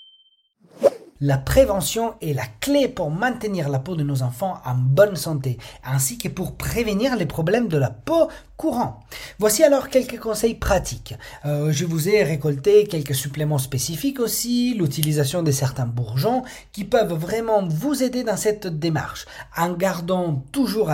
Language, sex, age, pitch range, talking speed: French, male, 40-59, 140-205 Hz, 155 wpm